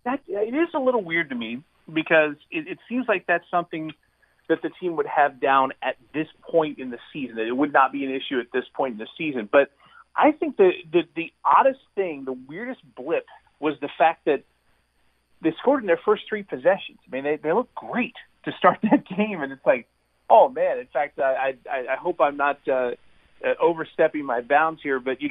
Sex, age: male, 40-59